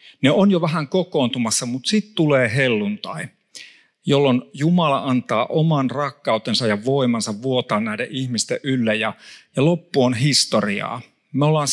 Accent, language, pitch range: native, Finnish, 125-170 Hz